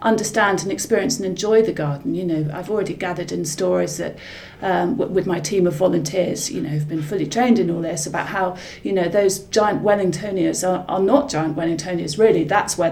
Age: 30-49